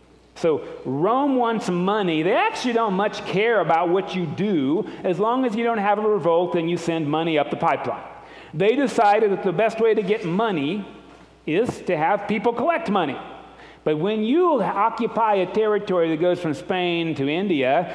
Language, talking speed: English, 185 wpm